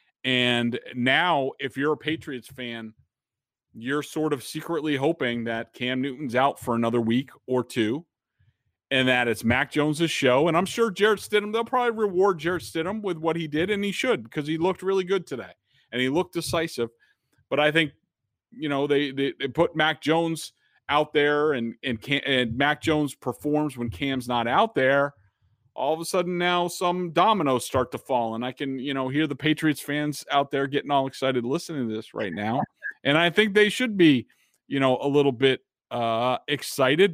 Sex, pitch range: male, 125-165 Hz